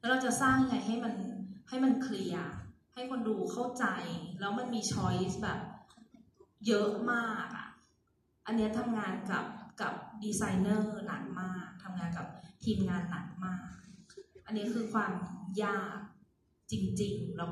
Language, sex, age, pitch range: Thai, female, 20-39, 185-235 Hz